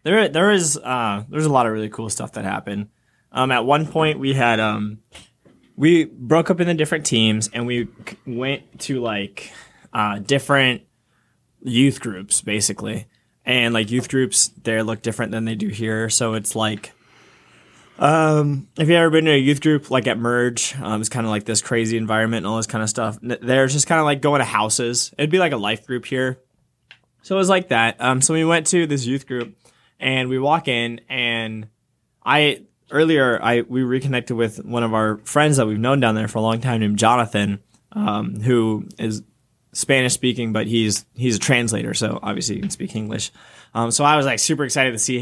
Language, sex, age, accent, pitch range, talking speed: English, male, 20-39, American, 110-140 Hz, 205 wpm